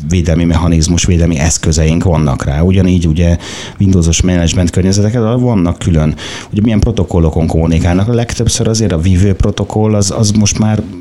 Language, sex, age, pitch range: Hungarian, male, 30-49, 80-100 Hz